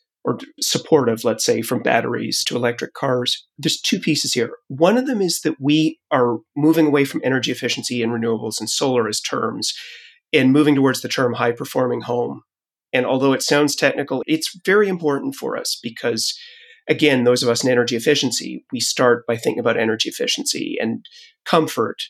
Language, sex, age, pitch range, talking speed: English, male, 30-49, 125-185 Hz, 175 wpm